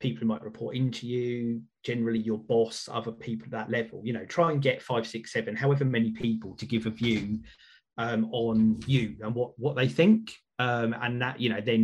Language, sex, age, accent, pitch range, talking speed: English, male, 30-49, British, 110-130 Hz, 220 wpm